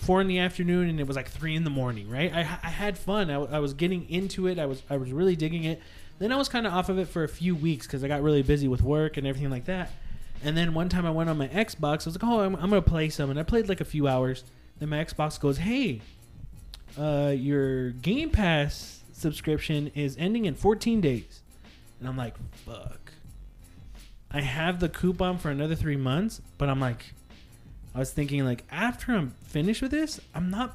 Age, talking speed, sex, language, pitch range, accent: 20-39, 230 wpm, male, English, 135-180 Hz, American